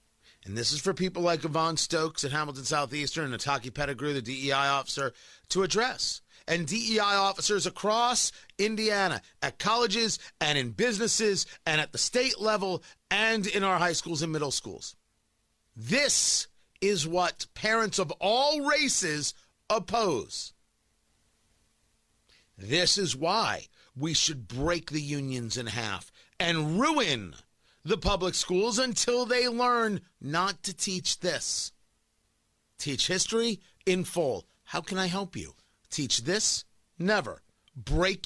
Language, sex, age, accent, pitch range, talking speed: English, male, 40-59, American, 120-195 Hz, 135 wpm